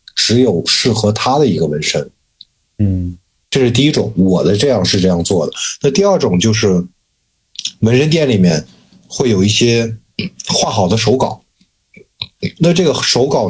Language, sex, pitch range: Chinese, male, 95-125 Hz